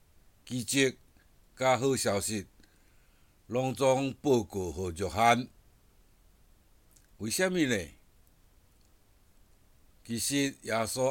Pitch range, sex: 95-125 Hz, male